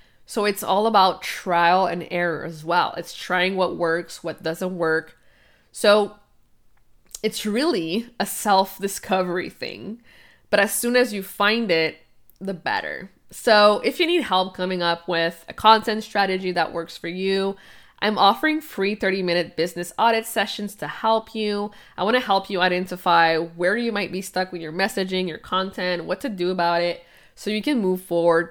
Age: 20-39